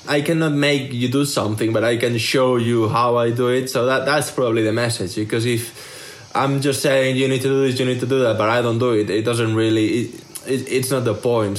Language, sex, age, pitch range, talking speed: English, male, 20-39, 115-140 Hz, 260 wpm